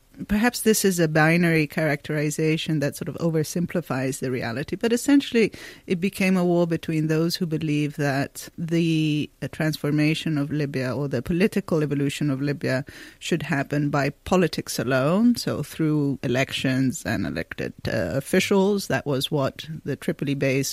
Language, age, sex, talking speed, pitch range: English, 30-49, female, 145 wpm, 145-180 Hz